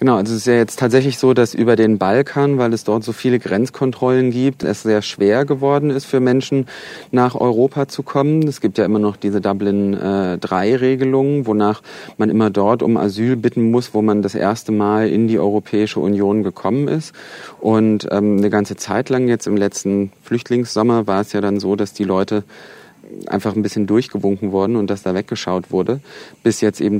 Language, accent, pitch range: German, German, 100-115 Hz